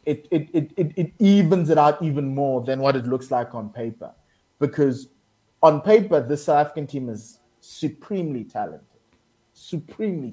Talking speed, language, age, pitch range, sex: 165 wpm, English, 20-39, 125-160 Hz, male